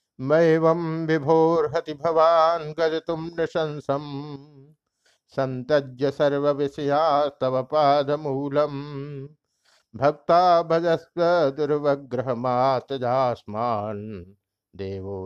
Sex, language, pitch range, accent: male, Hindi, 120-160 Hz, native